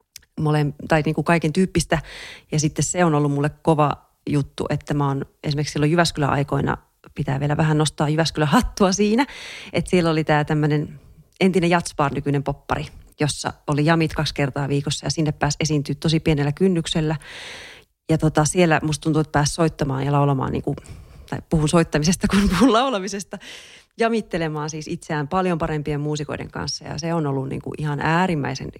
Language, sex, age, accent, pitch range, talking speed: Finnish, female, 30-49, native, 150-175 Hz, 165 wpm